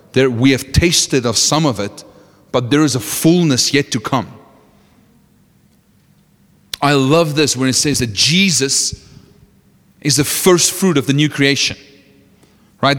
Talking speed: 150 wpm